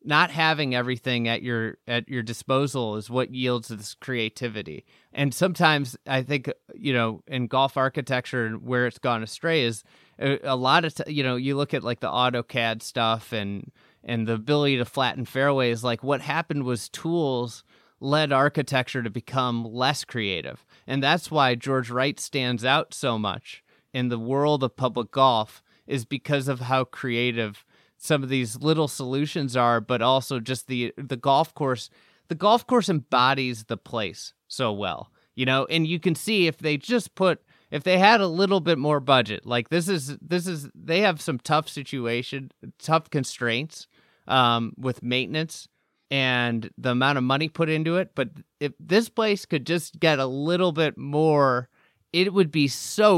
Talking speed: 175 wpm